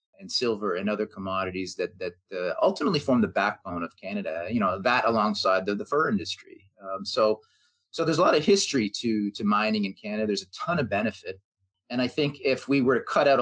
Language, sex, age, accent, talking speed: English, male, 40-59, American, 220 wpm